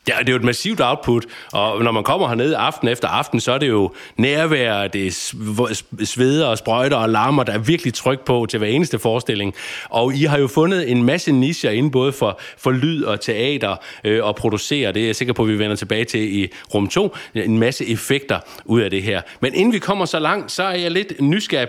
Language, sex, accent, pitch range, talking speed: Danish, male, native, 110-160 Hz, 240 wpm